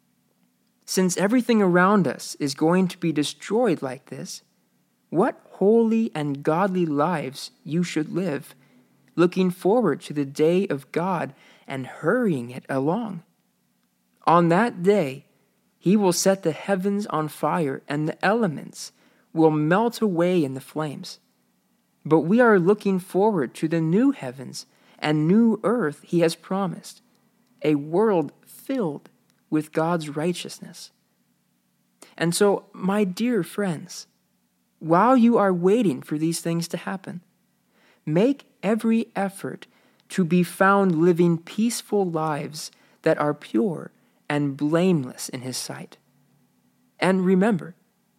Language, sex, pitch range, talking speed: English, male, 155-205 Hz, 130 wpm